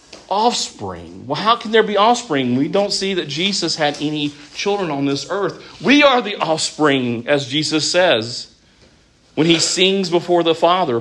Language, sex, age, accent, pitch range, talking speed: English, male, 40-59, American, 130-195 Hz, 170 wpm